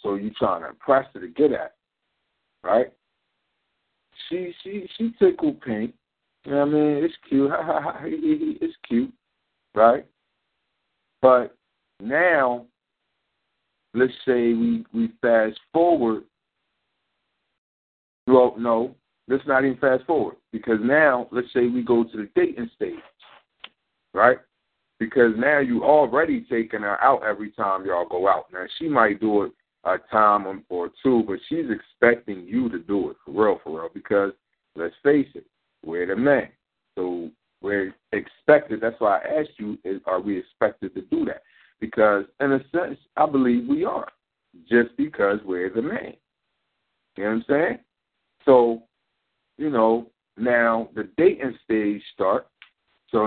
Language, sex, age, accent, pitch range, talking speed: English, male, 50-69, American, 105-150 Hz, 150 wpm